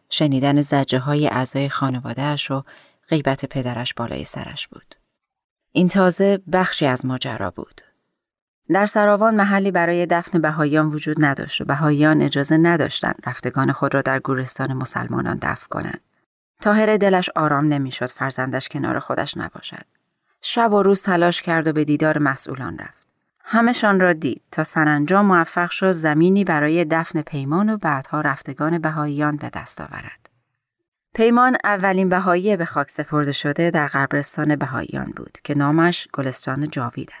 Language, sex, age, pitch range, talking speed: Persian, female, 30-49, 145-185 Hz, 140 wpm